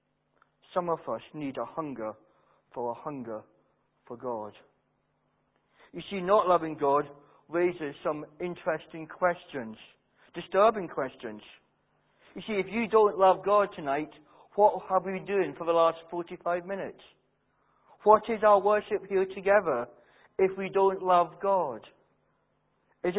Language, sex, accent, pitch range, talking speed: English, male, British, 155-200 Hz, 135 wpm